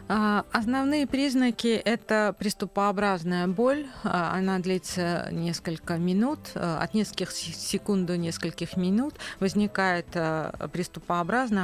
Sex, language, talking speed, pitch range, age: female, Russian, 90 wpm, 165-205 Hz, 40-59